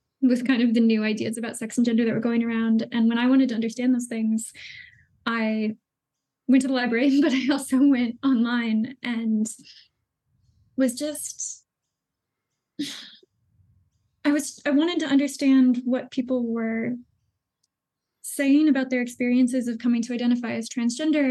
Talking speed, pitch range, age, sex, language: 150 wpm, 225-250 Hz, 20-39, female, English